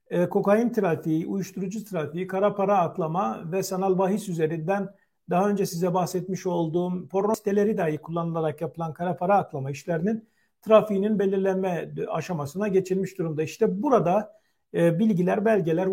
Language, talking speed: Turkish, 130 wpm